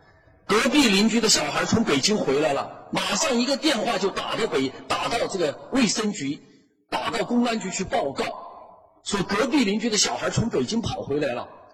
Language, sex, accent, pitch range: Chinese, male, native, 205-290 Hz